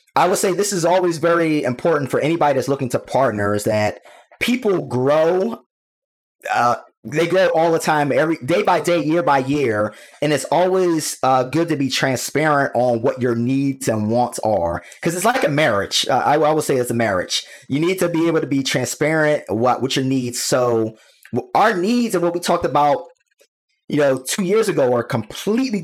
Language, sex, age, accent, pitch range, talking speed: English, male, 20-39, American, 125-170 Hz, 195 wpm